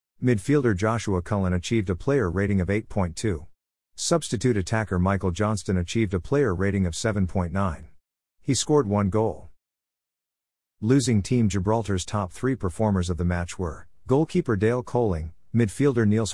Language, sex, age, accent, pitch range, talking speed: English, male, 50-69, American, 90-115 Hz, 140 wpm